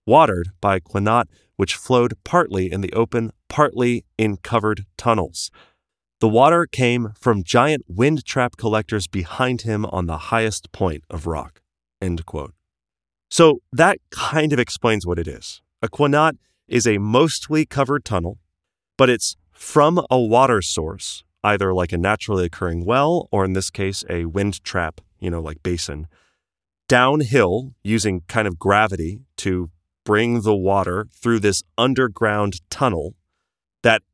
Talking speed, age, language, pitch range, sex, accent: 145 wpm, 30-49, English, 90-115 Hz, male, American